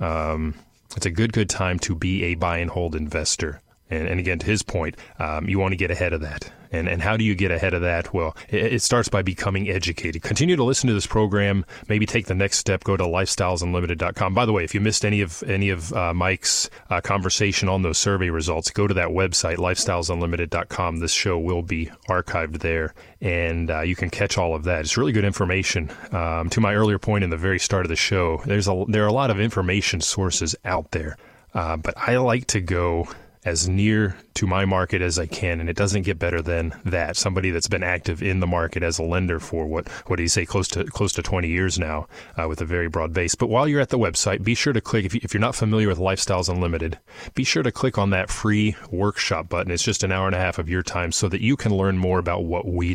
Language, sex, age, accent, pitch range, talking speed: English, male, 30-49, American, 85-105 Hz, 245 wpm